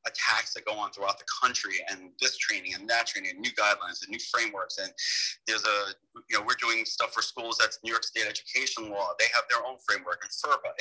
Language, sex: English, male